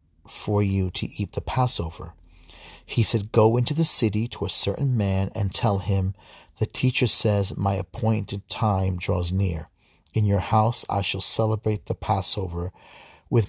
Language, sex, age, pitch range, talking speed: English, male, 40-59, 95-120 Hz, 160 wpm